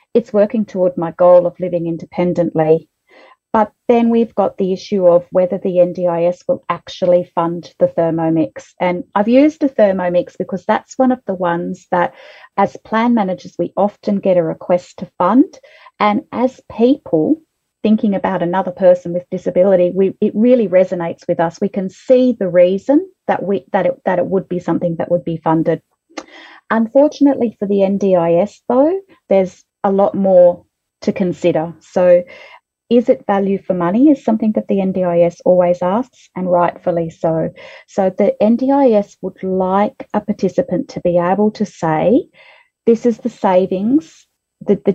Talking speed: 165 wpm